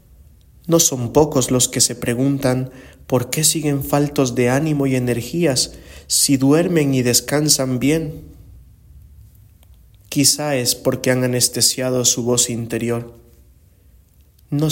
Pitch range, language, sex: 115-140 Hz, English, male